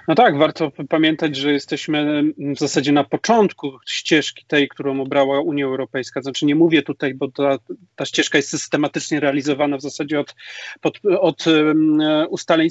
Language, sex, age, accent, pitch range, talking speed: Polish, male, 30-49, native, 145-170 Hz, 150 wpm